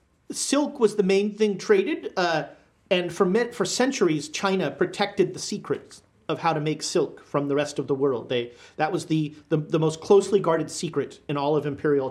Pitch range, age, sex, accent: 150-195 Hz, 40-59, male, American